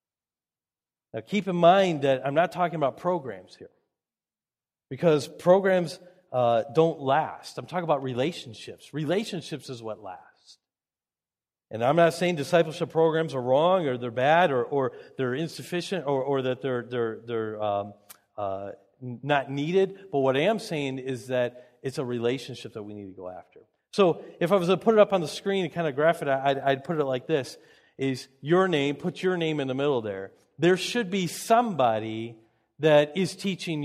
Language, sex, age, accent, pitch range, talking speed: English, male, 40-59, American, 135-185 Hz, 185 wpm